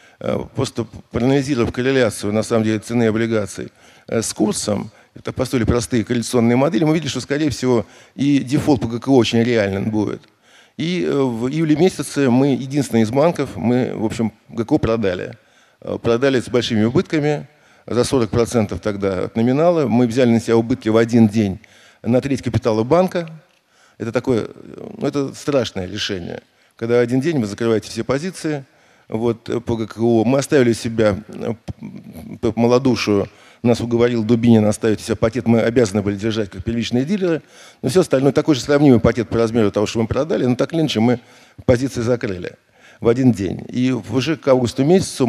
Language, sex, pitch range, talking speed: Russian, male, 110-135 Hz, 160 wpm